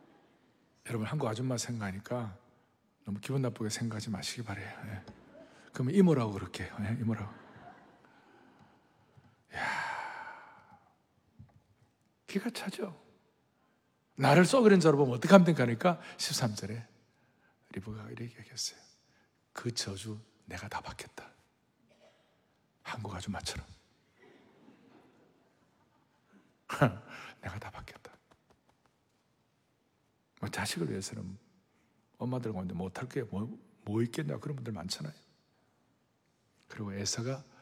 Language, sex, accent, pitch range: Korean, male, native, 105-145 Hz